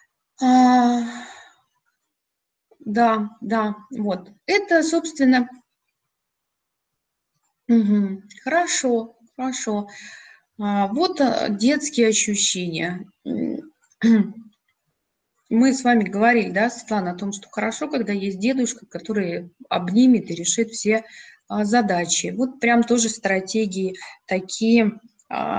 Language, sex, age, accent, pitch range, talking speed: Russian, female, 20-39, native, 210-270 Hz, 80 wpm